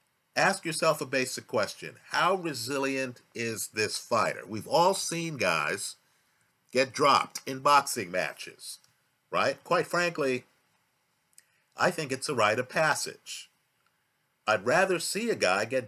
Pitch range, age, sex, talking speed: 130-165 Hz, 50-69, male, 130 wpm